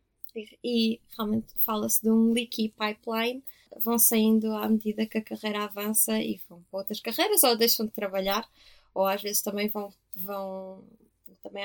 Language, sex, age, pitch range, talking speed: Portuguese, female, 20-39, 200-225 Hz, 160 wpm